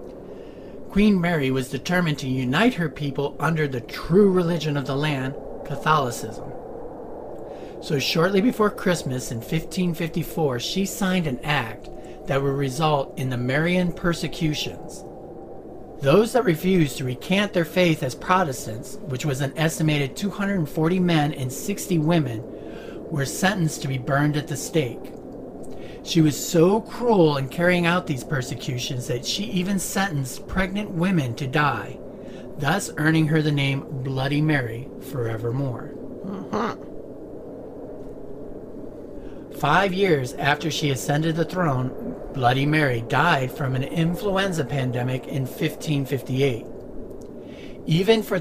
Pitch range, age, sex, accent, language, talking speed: 135-175 Hz, 40-59, male, American, English, 130 wpm